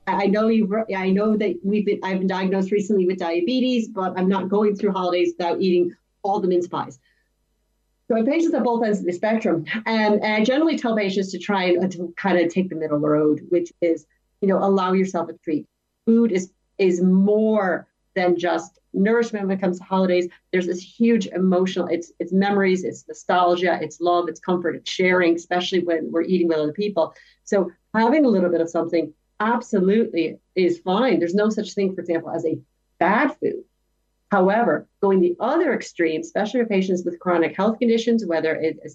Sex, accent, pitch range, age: female, American, 170-210 Hz, 40-59